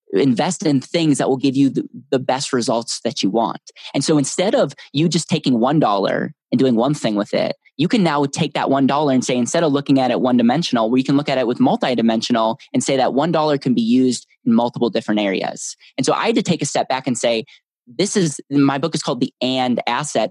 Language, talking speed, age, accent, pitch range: English, 240 wpm, 20-39, American, 115-145 Hz